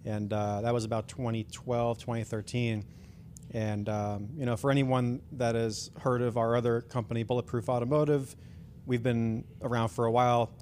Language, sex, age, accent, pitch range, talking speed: English, male, 30-49, American, 110-125 Hz, 145 wpm